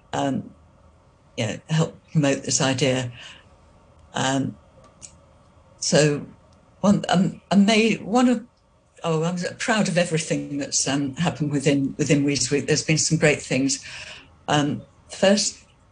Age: 60-79